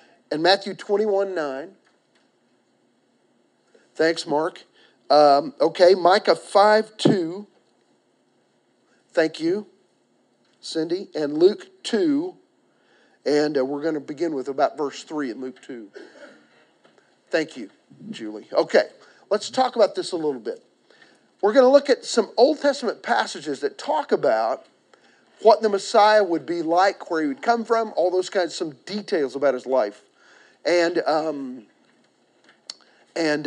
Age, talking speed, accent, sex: 40-59, 135 wpm, American, male